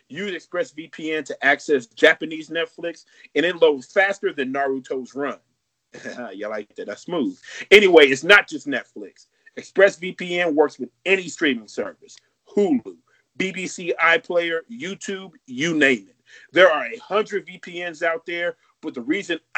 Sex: male